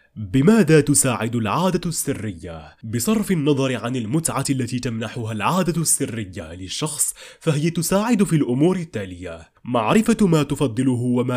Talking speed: 115 wpm